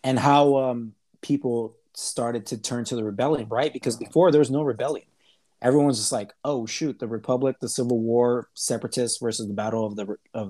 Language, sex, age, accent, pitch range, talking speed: English, male, 20-39, American, 105-125 Hz, 195 wpm